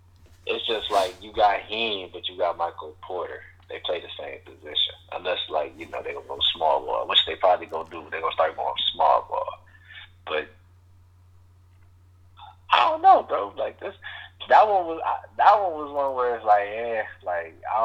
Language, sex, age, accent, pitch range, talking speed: English, male, 20-39, American, 90-110 Hz, 190 wpm